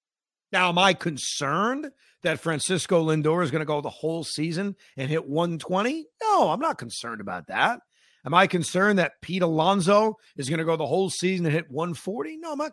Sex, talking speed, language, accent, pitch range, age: male, 200 wpm, English, American, 170-250 Hz, 40-59